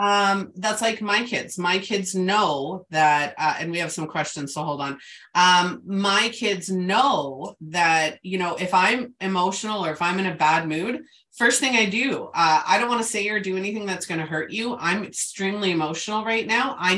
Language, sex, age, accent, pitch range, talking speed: English, female, 30-49, American, 155-210 Hz, 210 wpm